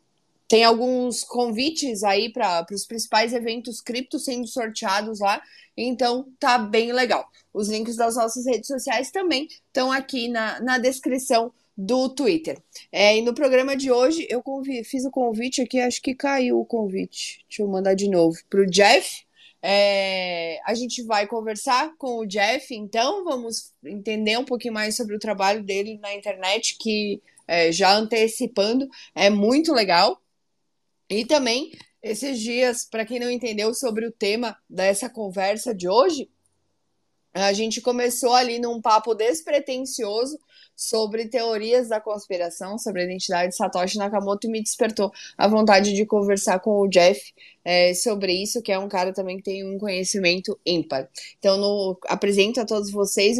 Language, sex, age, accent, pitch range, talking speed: Portuguese, female, 20-39, Brazilian, 200-245 Hz, 155 wpm